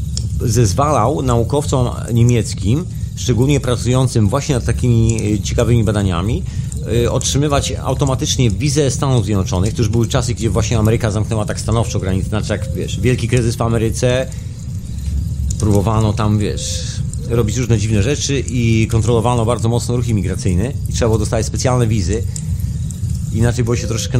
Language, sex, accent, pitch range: Polish, male, native, 105-125 Hz